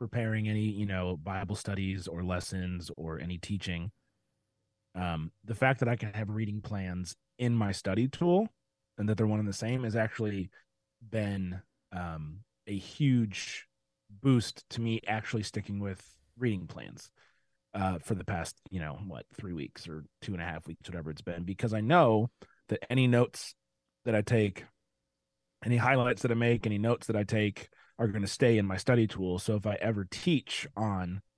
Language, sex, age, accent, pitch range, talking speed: English, male, 30-49, American, 90-115 Hz, 185 wpm